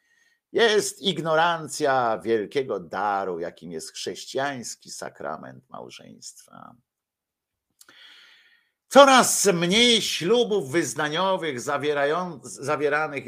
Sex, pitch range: male, 125-195 Hz